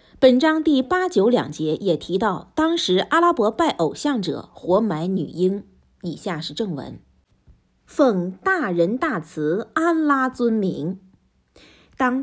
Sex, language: female, Chinese